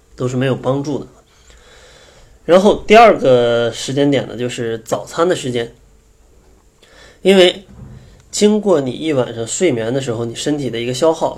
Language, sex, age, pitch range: Chinese, male, 20-39, 115-140 Hz